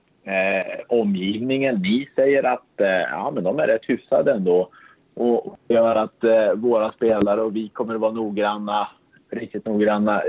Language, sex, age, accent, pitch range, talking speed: Swedish, male, 30-49, Norwegian, 105-135 Hz, 155 wpm